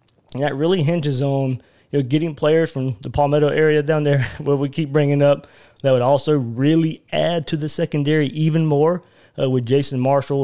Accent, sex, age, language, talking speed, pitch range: American, male, 20-39, English, 195 wpm, 120-145 Hz